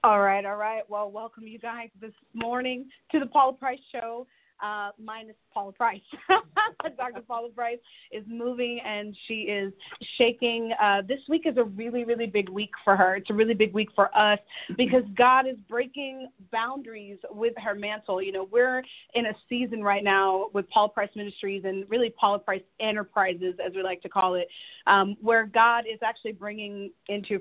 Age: 30-49